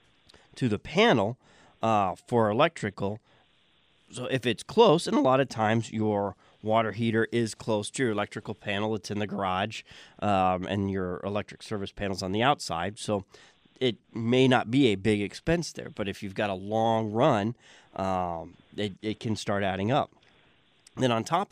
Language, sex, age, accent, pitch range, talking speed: English, male, 30-49, American, 100-130 Hz, 175 wpm